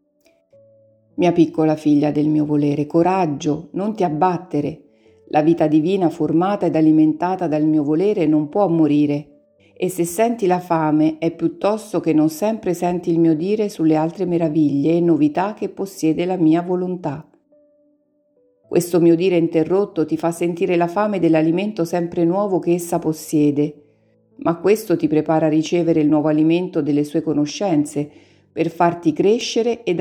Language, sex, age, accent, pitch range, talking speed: Italian, female, 50-69, native, 150-185 Hz, 155 wpm